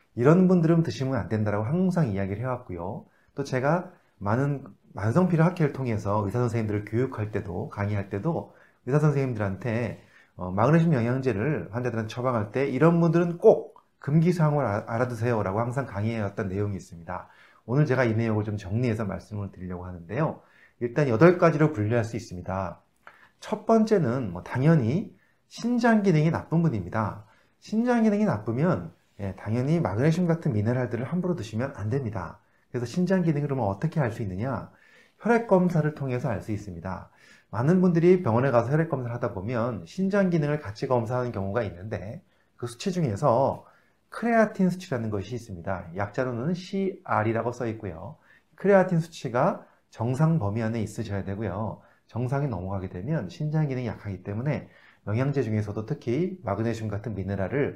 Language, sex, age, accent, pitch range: Korean, male, 30-49, native, 105-160 Hz